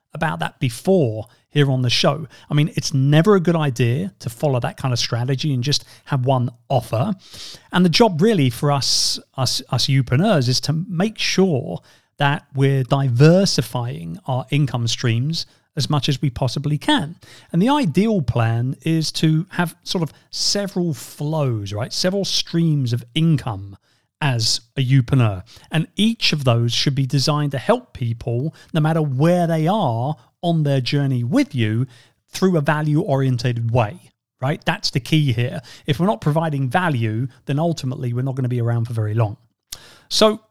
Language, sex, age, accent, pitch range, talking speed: English, male, 40-59, British, 125-160 Hz, 170 wpm